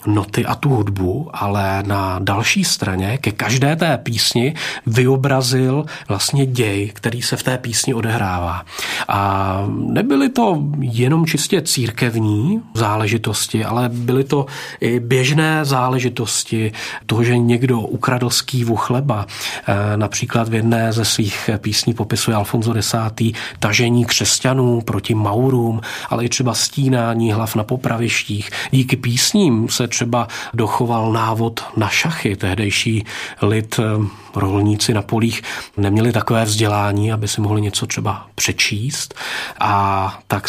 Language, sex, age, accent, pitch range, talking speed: Czech, male, 40-59, native, 110-130 Hz, 125 wpm